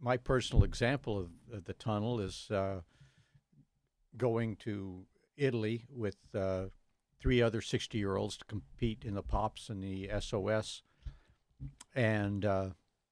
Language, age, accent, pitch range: English, 60-79, American, 100-125 Hz